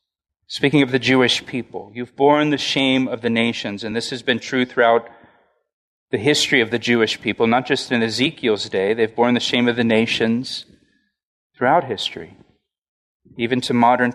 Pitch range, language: 125-170 Hz, English